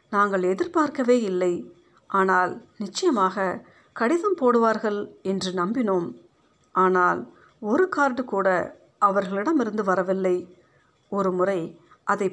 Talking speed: 90 wpm